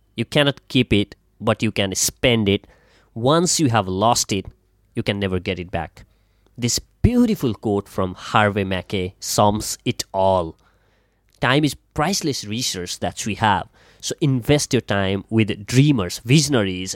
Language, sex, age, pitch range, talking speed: English, male, 20-39, 100-130 Hz, 150 wpm